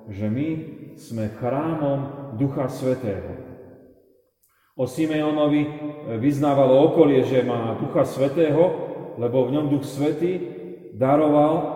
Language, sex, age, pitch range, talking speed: Slovak, male, 40-59, 120-150 Hz, 100 wpm